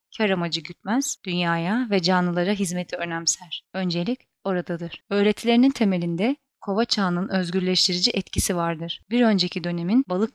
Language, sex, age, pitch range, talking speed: Turkish, female, 30-49, 175-215 Hz, 120 wpm